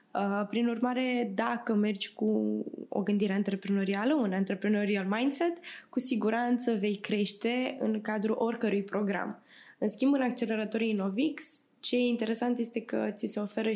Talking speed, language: 140 wpm, Romanian